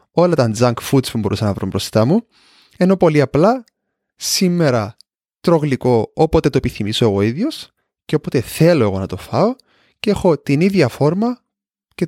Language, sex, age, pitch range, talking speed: Greek, male, 20-39, 125-170 Hz, 170 wpm